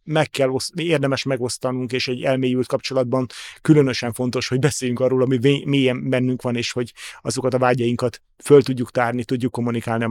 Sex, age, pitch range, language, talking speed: male, 30-49, 115-130 Hz, Hungarian, 165 wpm